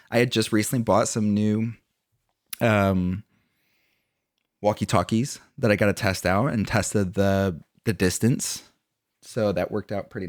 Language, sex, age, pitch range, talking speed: English, male, 30-49, 95-110 Hz, 145 wpm